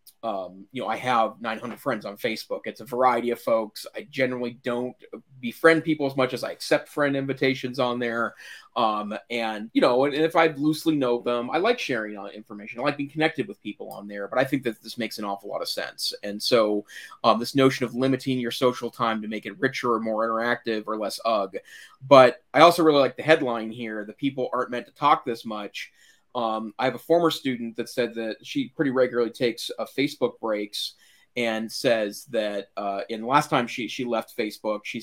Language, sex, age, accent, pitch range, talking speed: English, male, 30-49, American, 110-135 Hz, 215 wpm